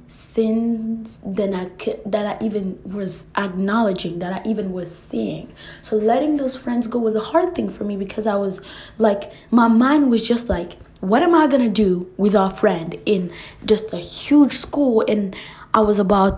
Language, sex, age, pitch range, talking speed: English, female, 20-39, 195-245 Hz, 185 wpm